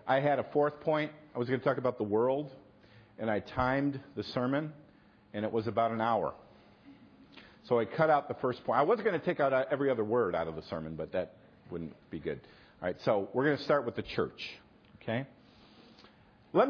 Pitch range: 105-155 Hz